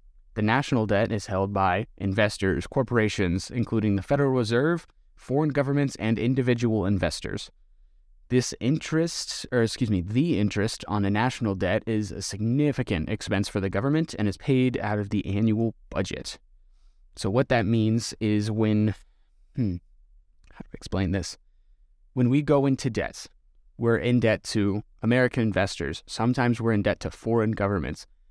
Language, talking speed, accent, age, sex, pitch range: English, 155 wpm, American, 20-39, male, 100-120 Hz